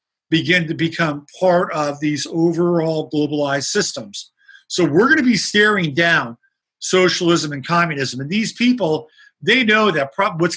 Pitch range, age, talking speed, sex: 150-195 Hz, 50-69, 150 wpm, male